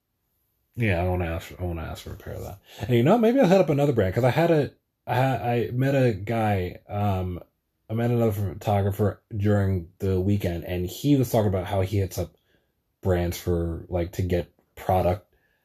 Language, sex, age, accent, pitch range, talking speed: English, male, 30-49, American, 90-115 Hz, 215 wpm